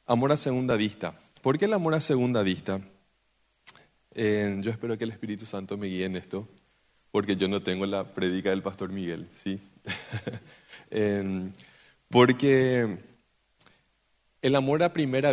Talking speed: 150 wpm